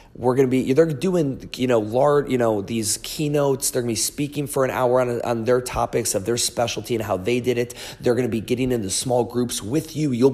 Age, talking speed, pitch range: 30-49, 245 wpm, 110-130 Hz